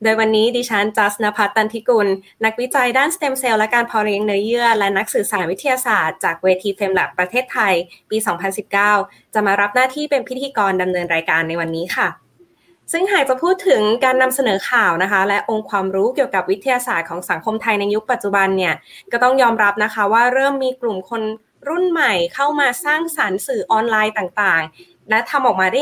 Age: 20-39